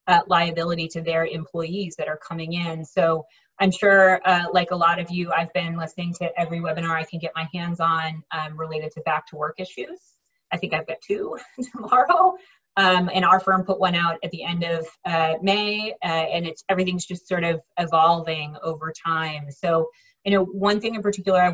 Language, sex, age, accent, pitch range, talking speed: English, female, 30-49, American, 160-185 Hz, 205 wpm